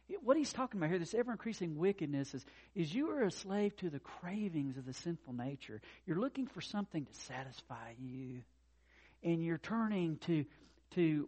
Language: English